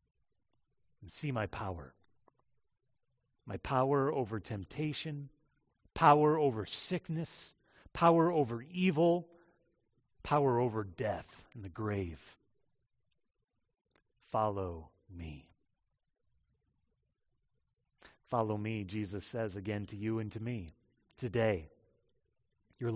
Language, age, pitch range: English, 30-49, 105-140 Hz